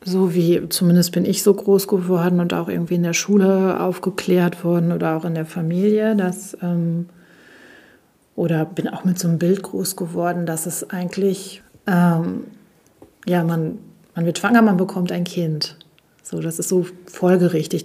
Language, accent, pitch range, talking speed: German, German, 175-200 Hz, 170 wpm